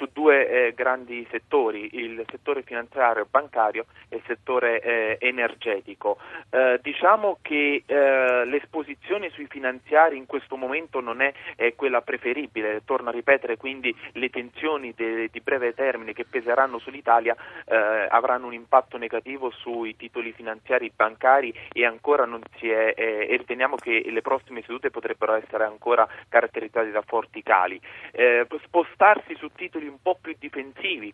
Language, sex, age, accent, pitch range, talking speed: Italian, male, 30-49, native, 115-145 Hz, 145 wpm